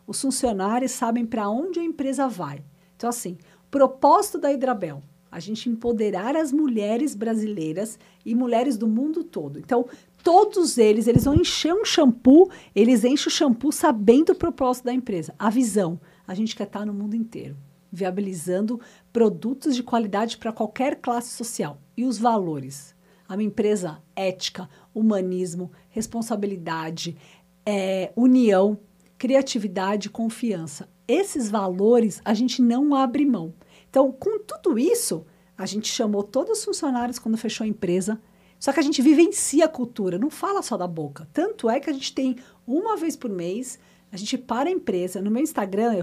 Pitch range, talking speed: 190-265 Hz, 160 wpm